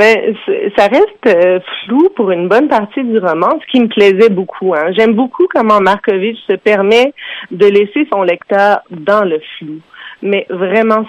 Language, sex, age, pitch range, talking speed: French, female, 40-59, 185-240 Hz, 170 wpm